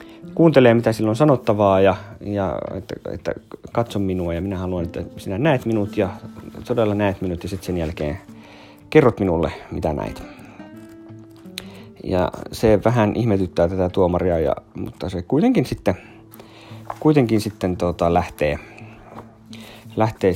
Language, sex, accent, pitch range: Finnish, male, native, 95-115 Hz